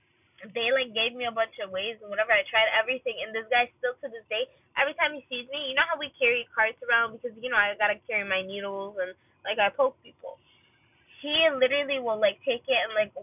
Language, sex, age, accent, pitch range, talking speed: English, female, 10-29, American, 215-275 Hz, 240 wpm